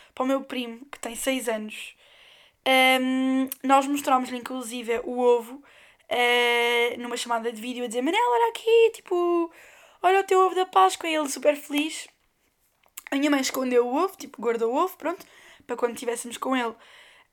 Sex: female